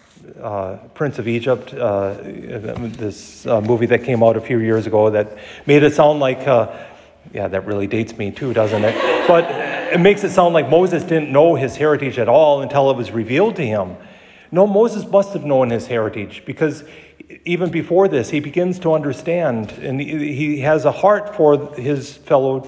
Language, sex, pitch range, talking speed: English, male, 105-145 Hz, 190 wpm